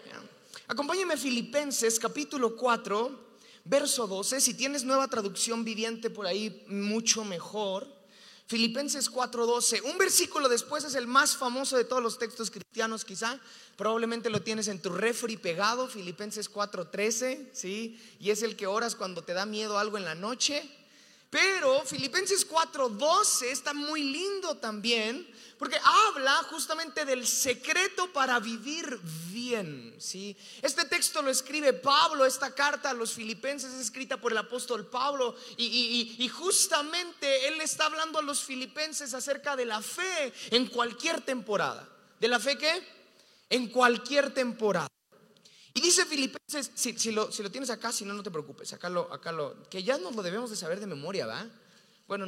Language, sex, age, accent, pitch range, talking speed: Spanish, male, 30-49, Mexican, 220-280 Hz, 160 wpm